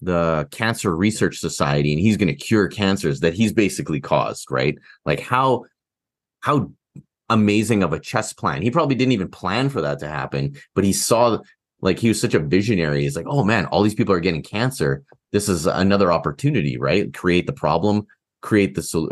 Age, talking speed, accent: 30-49, 195 wpm, American